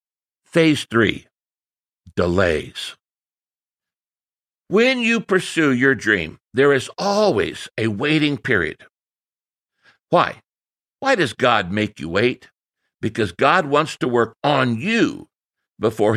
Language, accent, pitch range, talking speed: English, American, 110-170 Hz, 110 wpm